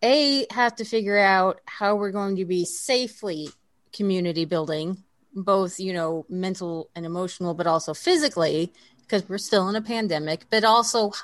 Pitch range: 175-230 Hz